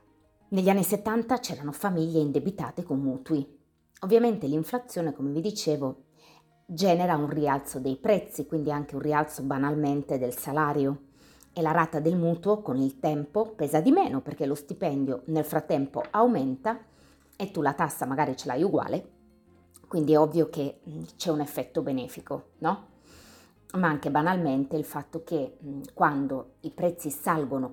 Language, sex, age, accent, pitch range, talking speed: Italian, female, 30-49, native, 140-170 Hz, 150 wpm